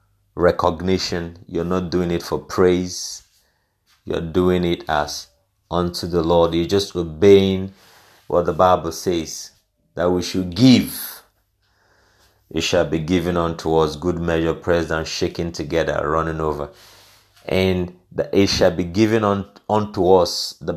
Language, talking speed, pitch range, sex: English, 140 wpm, 85-100 Hz, male